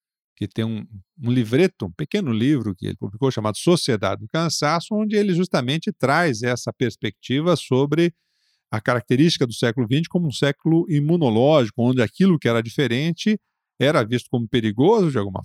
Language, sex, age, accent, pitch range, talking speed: Portuguese, male, 50-69, Brazilian, 110-150 Hz, 165 wpm